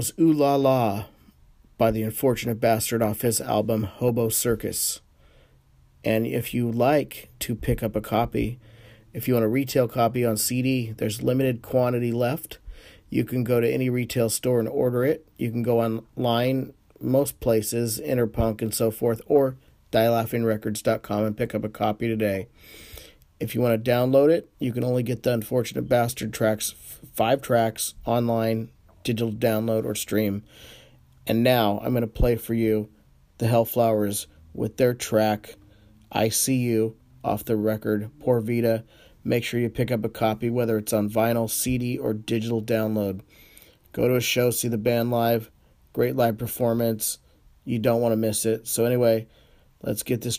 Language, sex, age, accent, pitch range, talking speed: English, male, 40-59, American, 110-120 Hz, 170 wpm